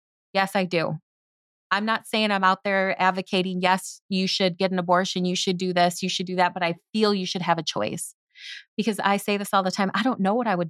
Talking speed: 250 wpm